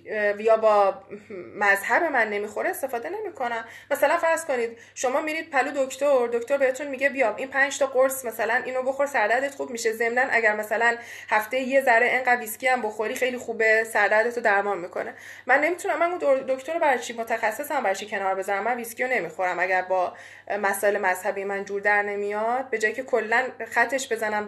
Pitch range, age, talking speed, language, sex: 200-265 Hz, 20-39, 170 wpm, Persian, female